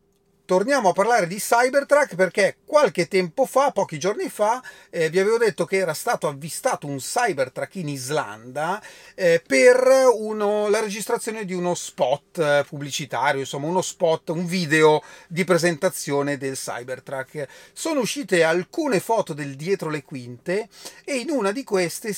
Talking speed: 150 wpm